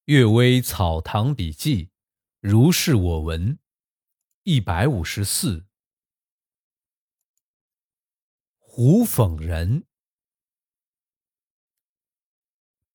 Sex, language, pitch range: male, Chinese, 95-150 Hz